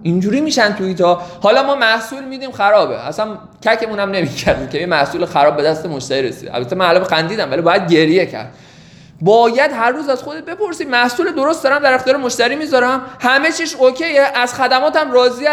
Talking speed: 185 wpm